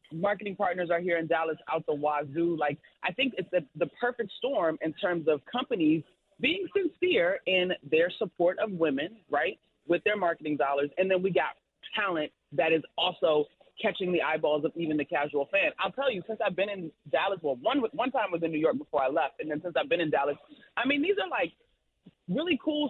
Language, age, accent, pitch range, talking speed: English, 30-49, American, 160-240 Hz, 220 wpm